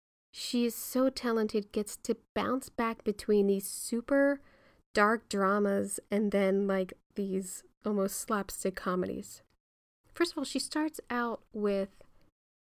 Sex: female